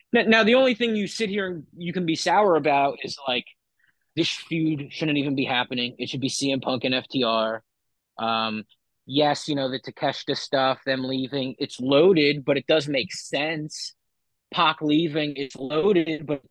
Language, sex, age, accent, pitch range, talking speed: English, male, 30-49, American, 130-175 Hz, 180 wpm